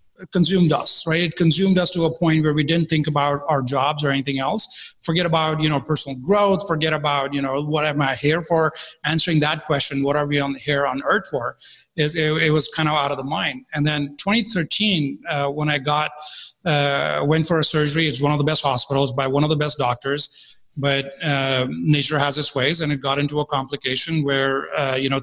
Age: 30-49